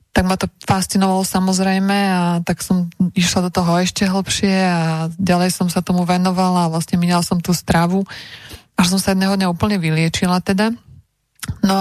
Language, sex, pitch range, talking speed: Slovak, female, 180-200 Hz, 175 wpm